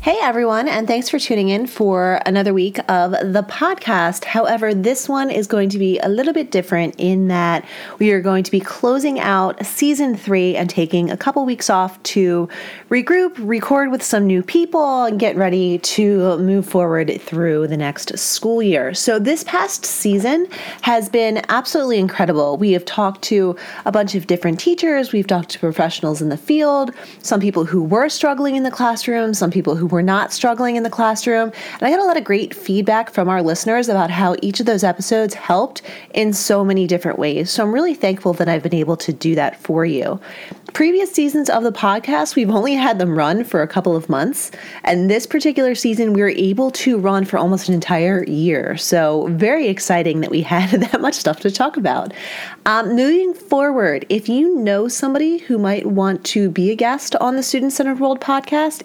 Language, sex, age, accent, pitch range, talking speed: English, female, 30-49, American, 185-255 Hz, 200 wpm